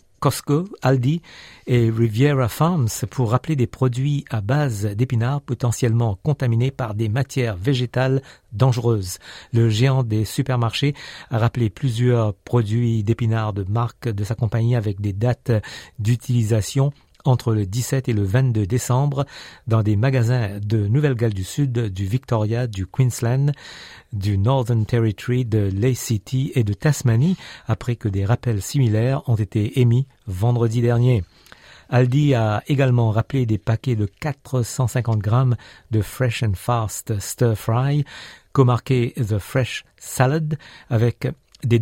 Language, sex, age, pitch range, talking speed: French, male, 50-69, 110-130 Hz, 140 wpm